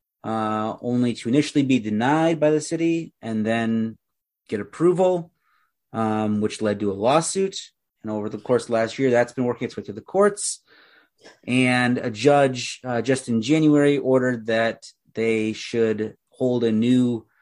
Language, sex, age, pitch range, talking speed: English, male, 30-49, 110-135 Hz, 165 wpm